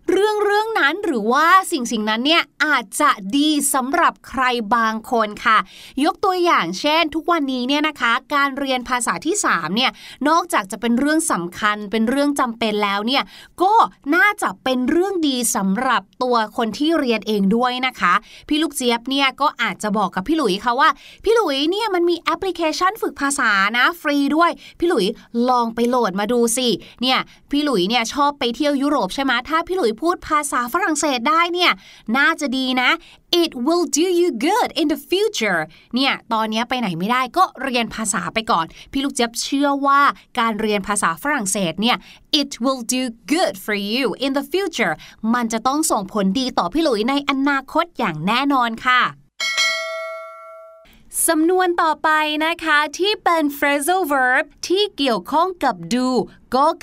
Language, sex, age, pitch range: Thai, female, 20-39, 235-320 Hz